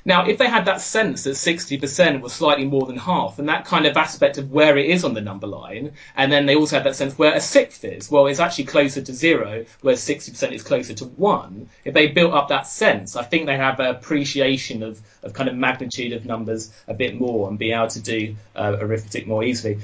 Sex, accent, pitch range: male, British, 120-155 Hz